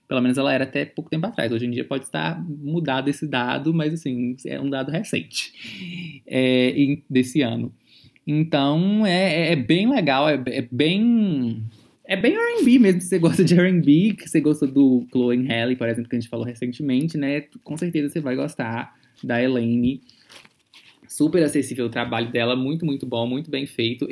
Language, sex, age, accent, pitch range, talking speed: Portuguese, male, 20-39, Brazilian, 130-160 Hz, 190 wpm